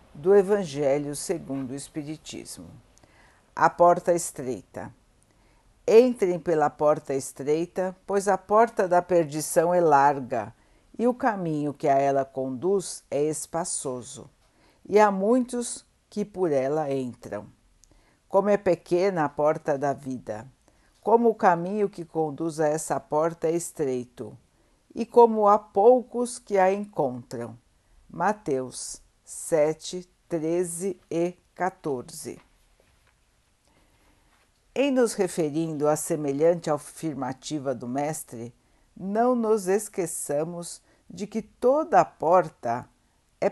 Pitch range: 145-200 Hz